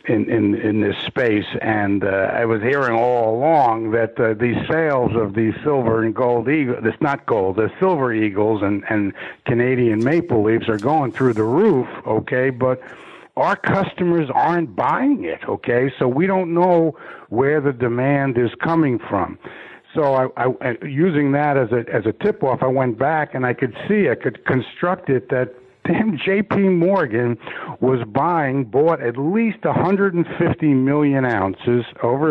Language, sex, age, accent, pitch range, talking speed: English, male, 60-79, American, 110-150 Hz, 170 wpm